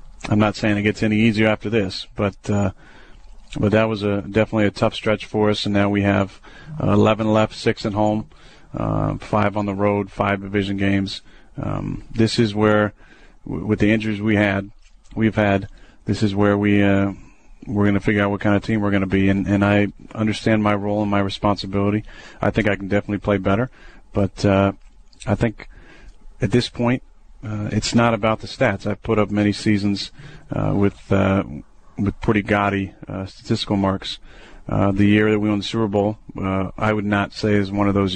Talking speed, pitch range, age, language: 205 wpm, 100-110 Hz, 40-59, English